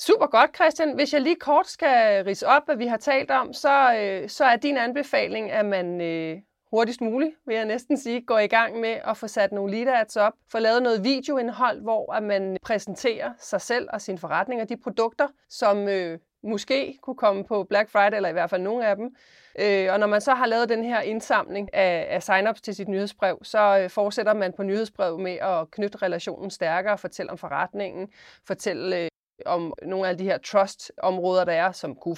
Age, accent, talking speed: 30-49, Danish, 215 wpm